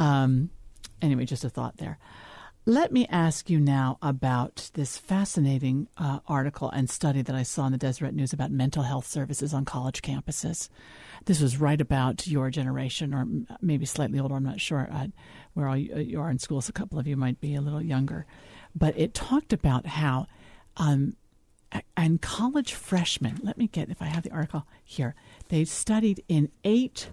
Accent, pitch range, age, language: American, 140-195 Hz, 50-69, English